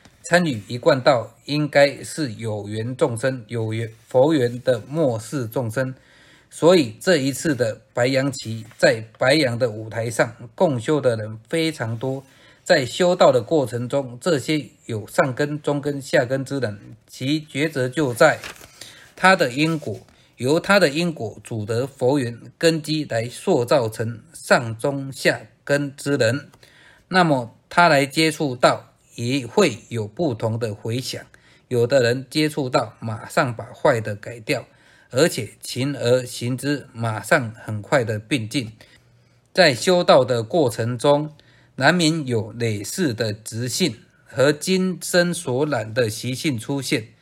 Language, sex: Chinese, male